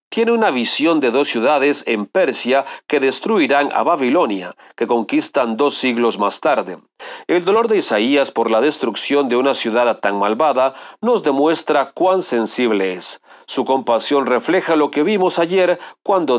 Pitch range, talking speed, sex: 120-170 Hz, 155 wpm, male